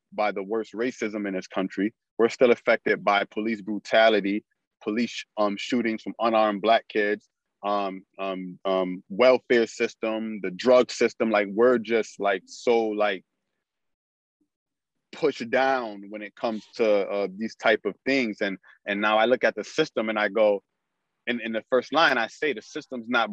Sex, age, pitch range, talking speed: male, 20-39, 105-130 Hz, 165 wpm